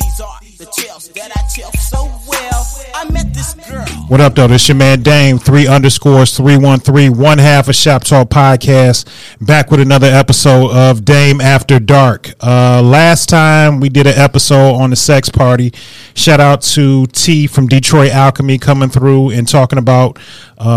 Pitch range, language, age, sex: 125-145 Hz, English, 30-49, male